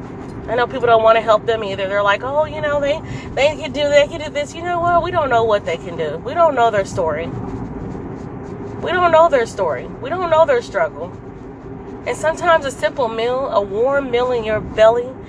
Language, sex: English, female